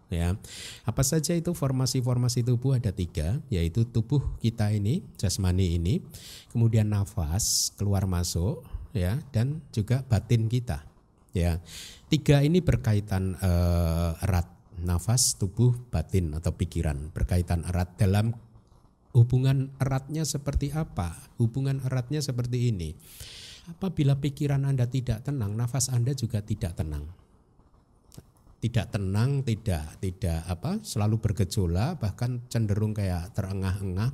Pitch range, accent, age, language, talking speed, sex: 95-140 Hz, native, 50-69, Indonesian, 115 wpm, male